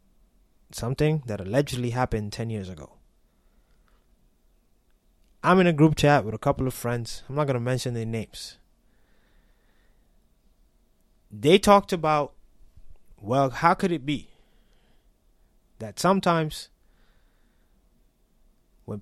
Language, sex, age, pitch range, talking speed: English, male, 20-39, 115-160 Hz, 110 wpm